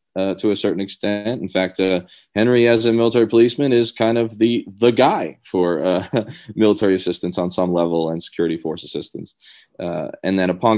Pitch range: 85-100 Hz